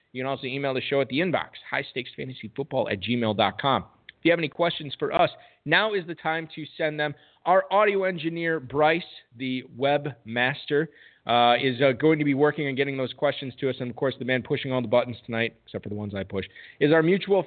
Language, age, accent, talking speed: English, 40-59, American, 215 wpm